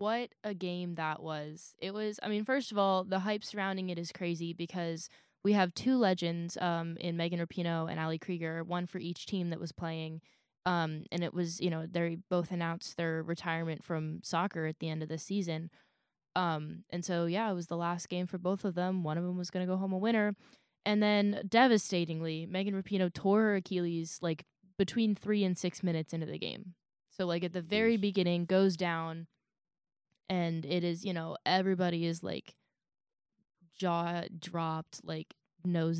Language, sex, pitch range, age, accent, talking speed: English, female, 165-200 Hz, 10-29, American, 190 wpm